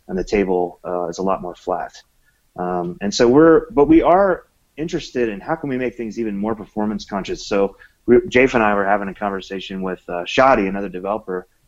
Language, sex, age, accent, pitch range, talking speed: English, male, 30-49, American, 100-125 Hz, 205 wpm